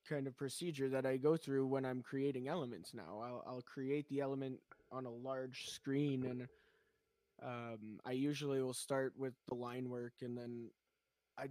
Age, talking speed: 20-39, 175 wpm